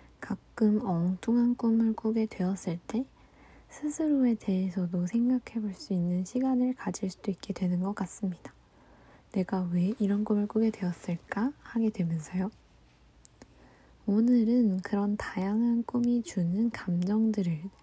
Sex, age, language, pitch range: female, 10-29, Korean, 185-235 Hz